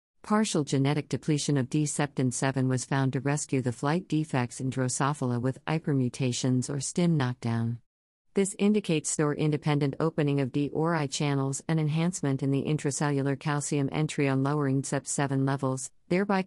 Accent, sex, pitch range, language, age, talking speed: American, female, 135-155 Hz, English, 50-69, 145 wpm